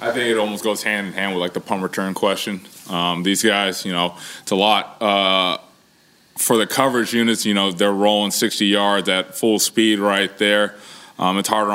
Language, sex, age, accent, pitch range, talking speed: English, male, 20-39, American, 90-105 Hz, 210 wpm